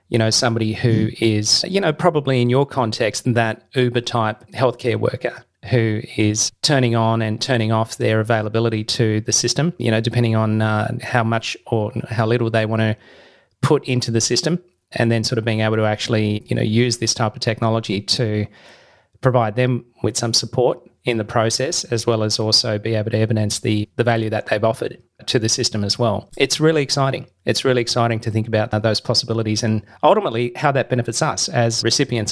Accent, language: Australian, English